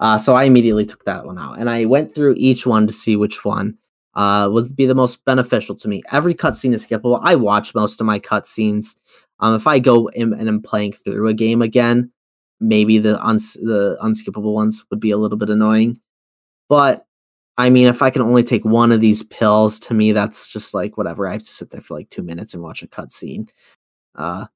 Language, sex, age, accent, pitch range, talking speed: English, male, 10-29, American, 105-125 Hz, 225 wpm